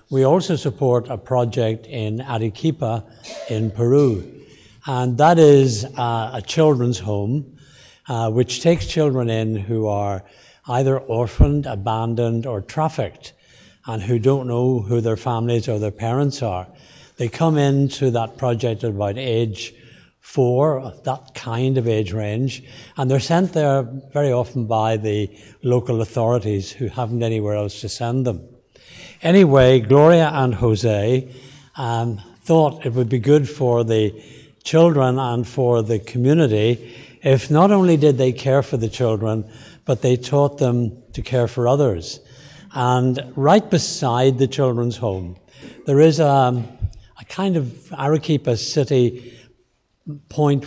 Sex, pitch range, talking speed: male, 115-135 Hz, 140 wpm